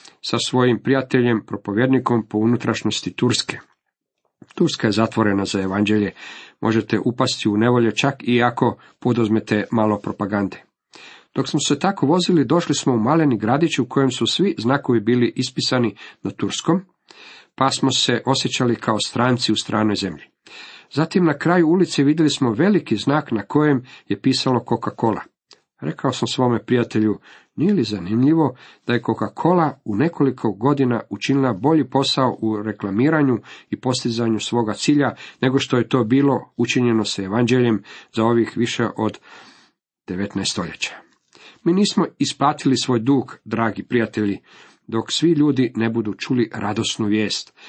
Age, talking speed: 50-69, 145 wpm